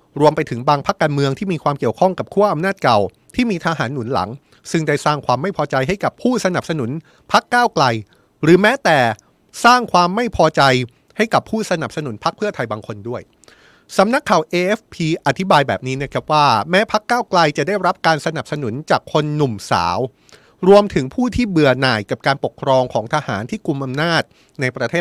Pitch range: 130-190 Hz